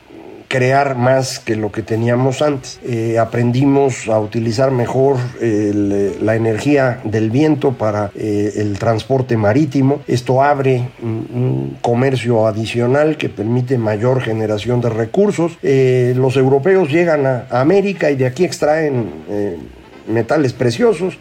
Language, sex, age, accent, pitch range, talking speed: Spanish, male, 50-69, Mexican, 115-145 Hz, 125 wpm